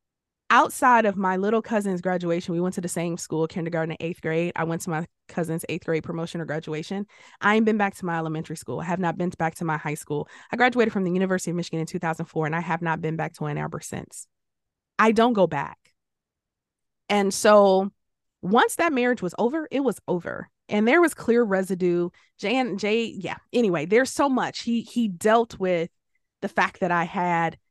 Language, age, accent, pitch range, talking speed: English, 20-39, American, 160-210 Hz, 210 wpm